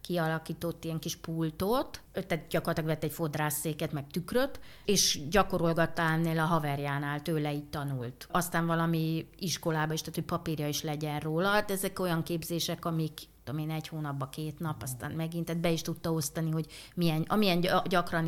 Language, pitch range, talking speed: Hungarian, 155-185 Hz, 160 wpm